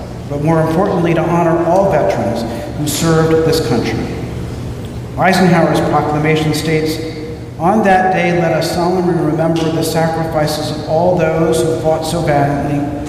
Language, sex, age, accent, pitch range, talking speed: English, male, 50-69, American, 150-175 Hz, 140 wpm